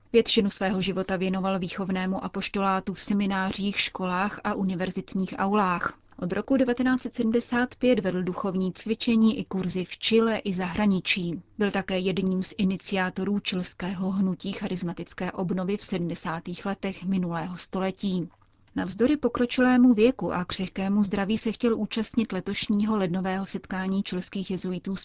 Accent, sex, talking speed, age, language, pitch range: native, female, 125 wpm, 30-49, Czech, 185-215 Hz